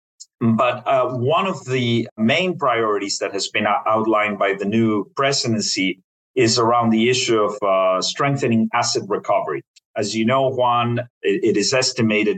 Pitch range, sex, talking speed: 110-125 Hz, male, 155 wpm